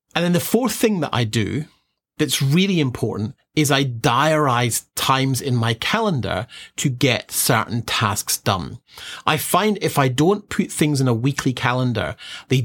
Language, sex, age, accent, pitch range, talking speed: English, male, 40-59, British, 115-155 Hz, 165 wpm